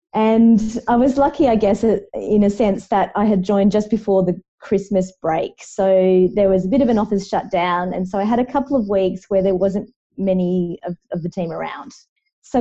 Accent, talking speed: Australian, 220 wpm